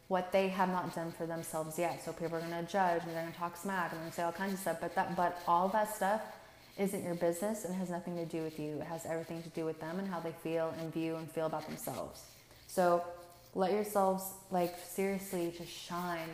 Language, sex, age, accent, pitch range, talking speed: English, female, 20-39, American, 170-190 Hz, 250 wpm